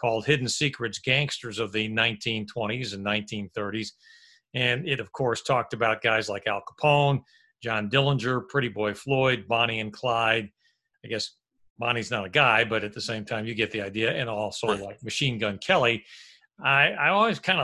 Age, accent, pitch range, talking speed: 40-59, American, 115-155 Hz, 175 wpm